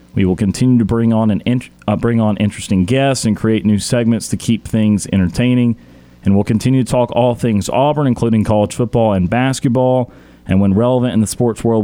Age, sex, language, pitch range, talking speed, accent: 30-49, male, English, 105-130 Hz, 210 wpm, American